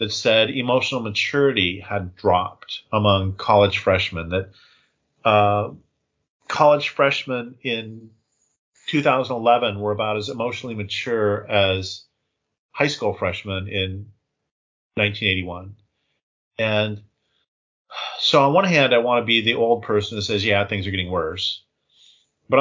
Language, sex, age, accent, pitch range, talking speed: English, male, 40-59, American, 95-115 Hz, 120 wpm